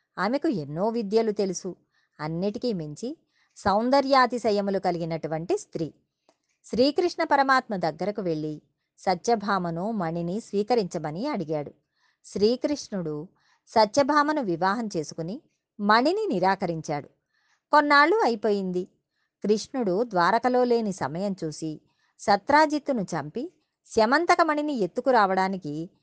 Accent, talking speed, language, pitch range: native, 80 wpm, Telugu, 170-250 Hz